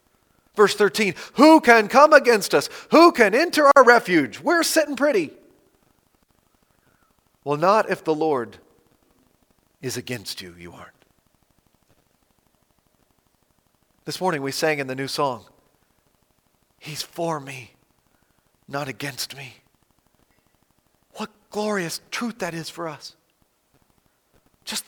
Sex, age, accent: male, 40-59, American